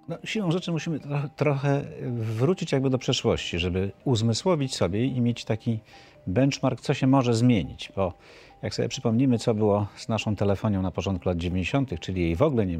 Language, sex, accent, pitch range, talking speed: Polish, male, native, 95-135 Hz, 180 wpm